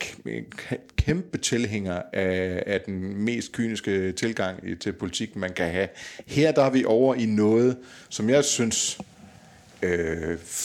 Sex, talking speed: male, 135 wpm